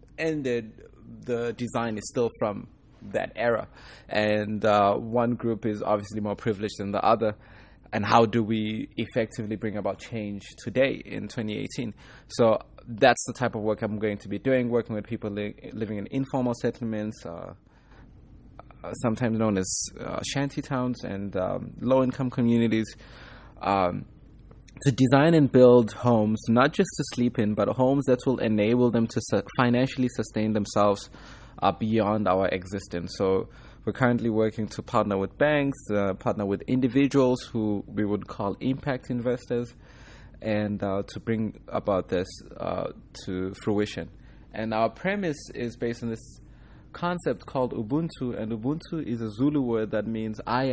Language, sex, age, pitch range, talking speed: English, male, 20-39, 105-125 Hz, 155 wpm